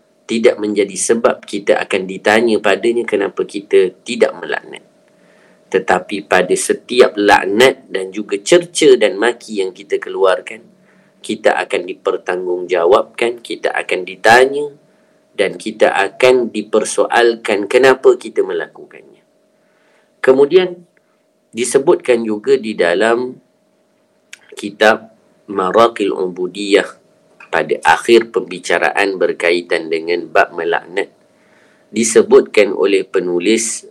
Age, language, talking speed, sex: 40-59, English, 95 wpm, male